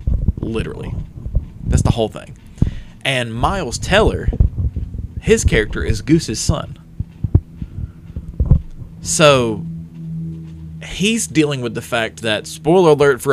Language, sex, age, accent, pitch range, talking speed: English, male, 20-39, American, 90-125 Hz, 105 wpm